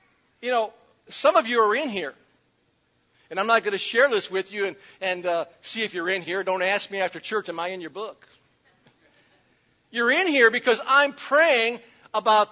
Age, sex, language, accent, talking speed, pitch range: 50-69, male, English, American, 200 wpm, 185-235 Hz